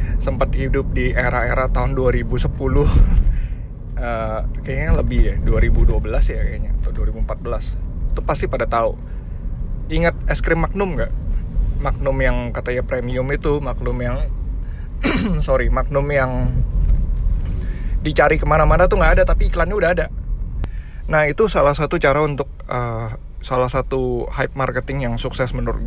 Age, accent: 20-39, native